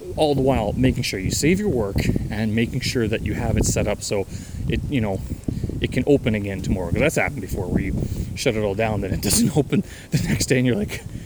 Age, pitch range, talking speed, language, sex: 30-49, 100-125 Hz, 250 wpm, English, male